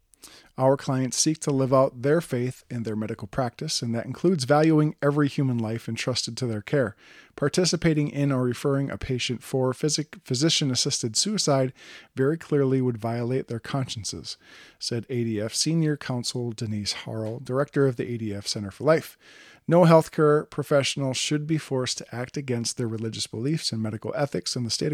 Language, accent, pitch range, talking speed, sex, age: English, American, 115-145 Hz, 165 wpm, male, 40-59